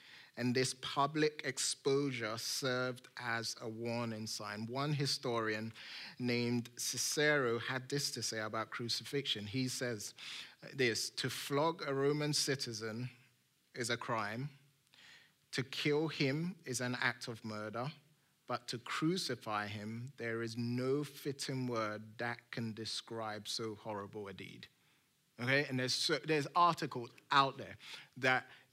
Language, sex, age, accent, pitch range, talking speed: English, male, 30-49, British, 115-135 Hz, 130 wpm